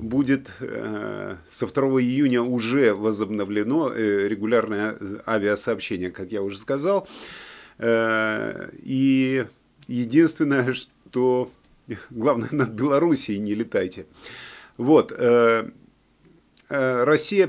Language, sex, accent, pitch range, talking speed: Russian, male, native, 105-130 Hz, 70 wpm